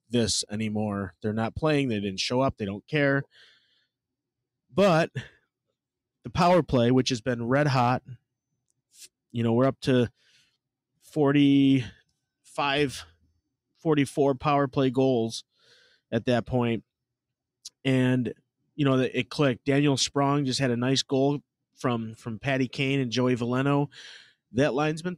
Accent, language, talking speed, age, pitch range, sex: American, English, 135 wpm, 30-49, 120-140 Hz, male